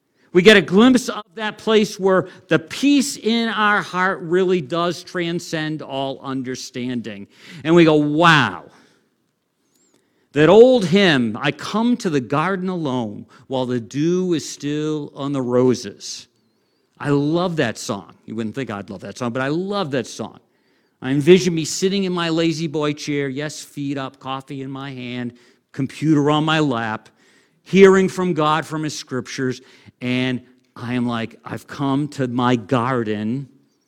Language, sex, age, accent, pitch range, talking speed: English, male, 50-69, American, 120-155 Hz, 160 wpm